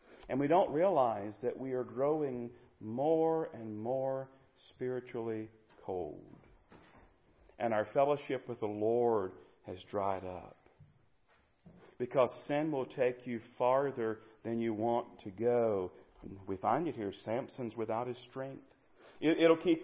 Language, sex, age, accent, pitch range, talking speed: English, male, 40-59, American, 120-155 Hz, 130 wpm